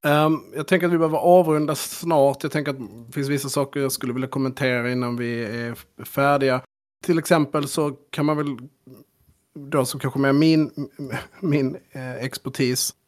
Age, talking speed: 30-49, 165 wpm